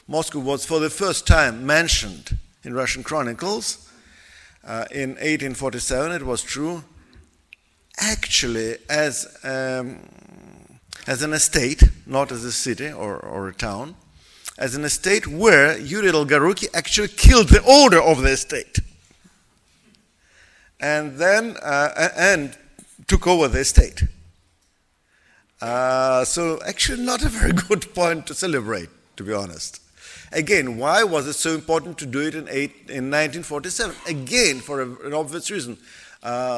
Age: 50-69